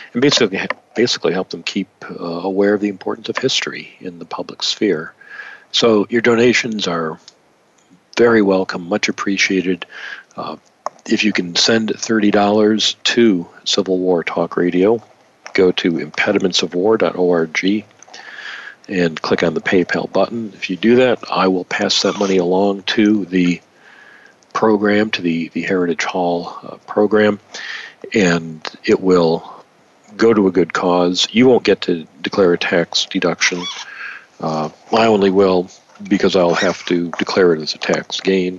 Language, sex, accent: English, male, American